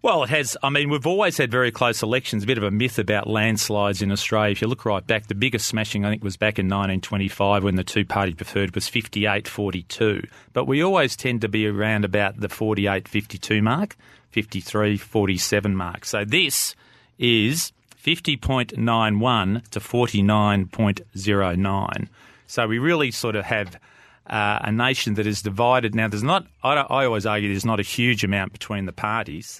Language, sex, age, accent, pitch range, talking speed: English, male, 30-49, Australian, 100-115 Hz, 175 wpm